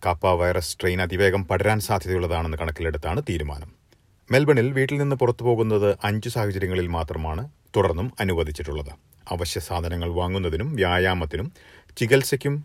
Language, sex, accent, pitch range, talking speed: Malayalam, male, native, 85-110 Hz, 110 wpm